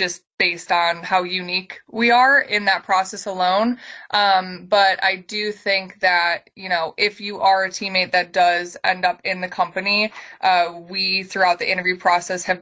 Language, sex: English, female